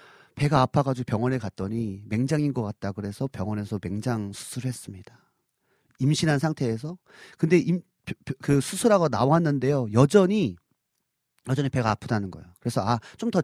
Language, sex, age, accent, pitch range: Korean, male, 40-59, native, 115-170 Hz